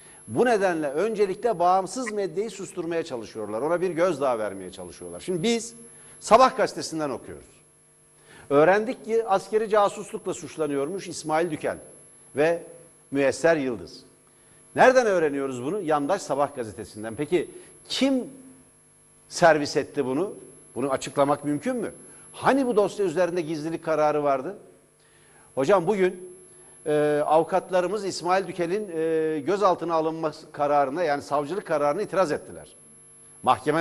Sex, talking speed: male, 115 wpm